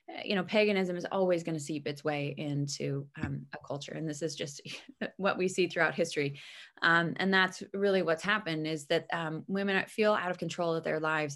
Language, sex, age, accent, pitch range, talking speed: English, female, 20-39, American, 155-185 Hz, 210 wpm